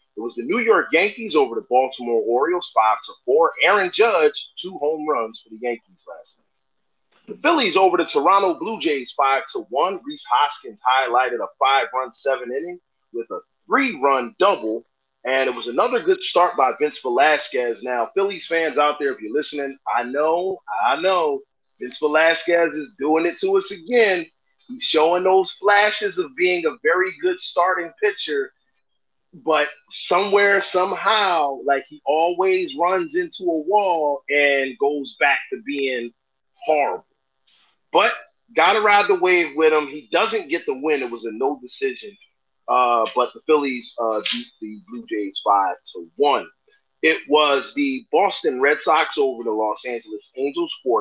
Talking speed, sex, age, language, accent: 165 wpm, male, 30-49, English, American